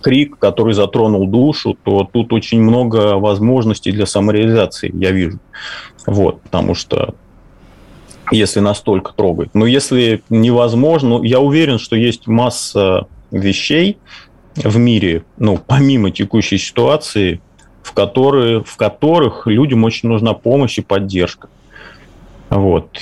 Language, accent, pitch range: Russian, native, 100-120 Hz